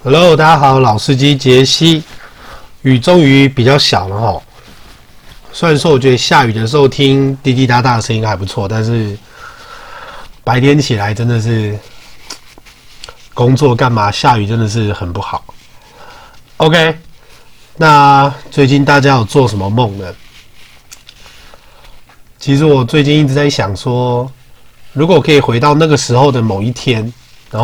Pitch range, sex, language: 115-140 Hz, male, Chinese